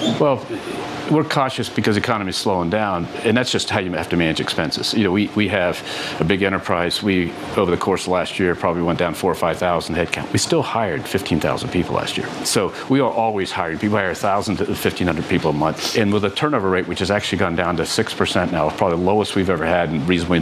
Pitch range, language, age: 90-110 Hz, English, 40-59